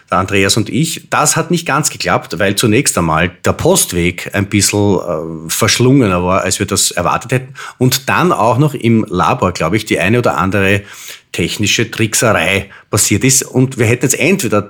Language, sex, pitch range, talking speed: German, male, 95-130 Hz, 175 wpm